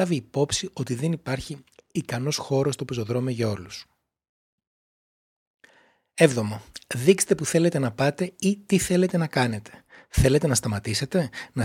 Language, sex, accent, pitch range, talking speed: Greek, male, native, 120-170 Hz, 130 wpm